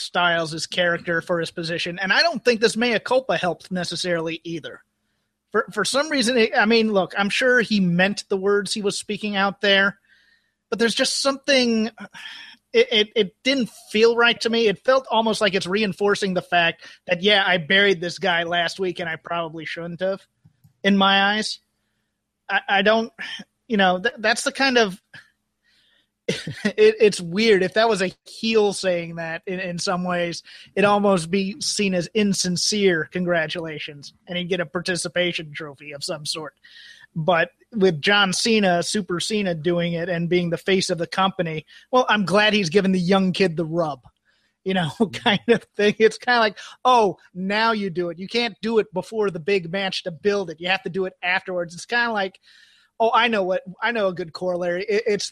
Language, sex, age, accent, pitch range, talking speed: English, male, 30-49, American, 175-215 Hz, 195 wpm